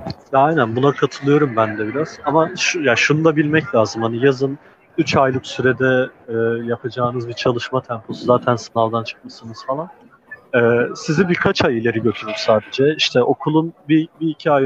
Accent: native